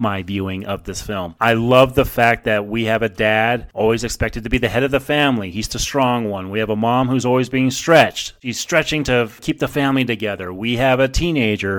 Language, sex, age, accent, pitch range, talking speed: English, male, 30-49, American, 110-135 Hz, 235 wpm